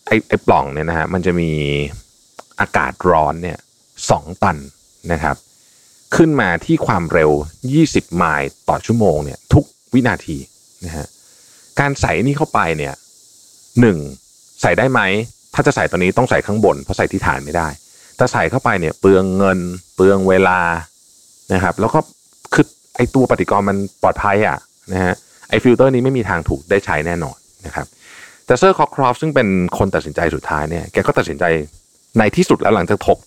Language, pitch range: Thai, 80-115 Hz